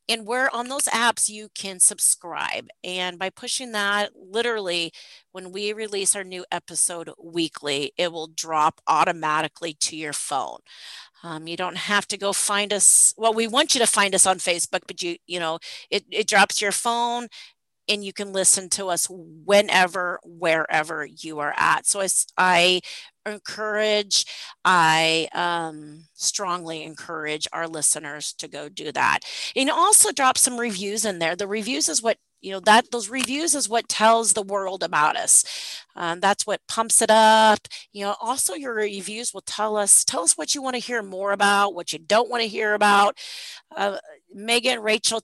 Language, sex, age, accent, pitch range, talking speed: English, female, 40-59, American, 180-225 Hz, 180 wpm